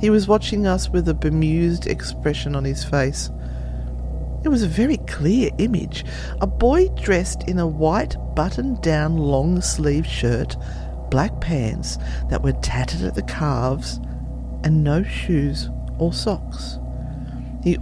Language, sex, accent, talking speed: English, female, Australian, 140 wpm